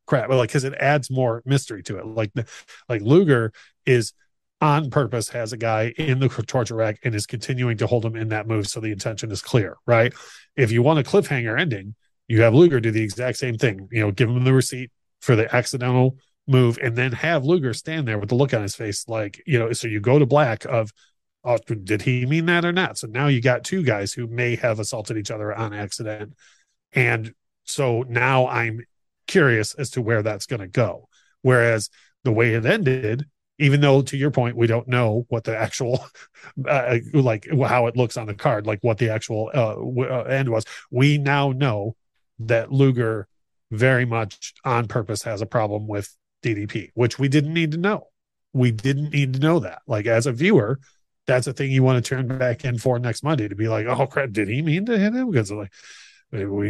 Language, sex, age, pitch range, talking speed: English, male, 30-49, 110-140 Hz, 210 wpm